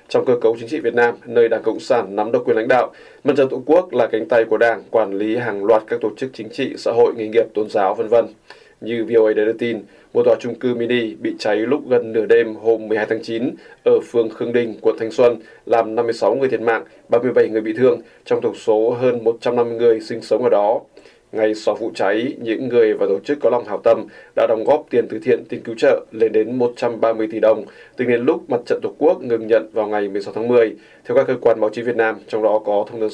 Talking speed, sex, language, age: 255 wpm, male, Vietnamese, 20-39